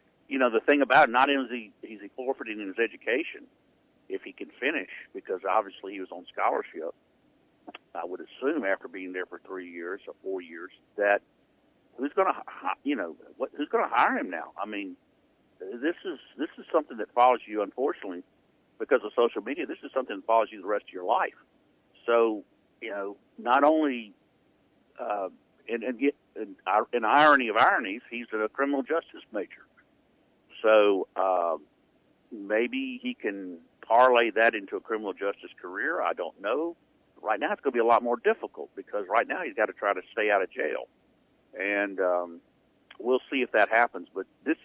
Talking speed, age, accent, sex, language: 180 wpm, 60-79, American, male, English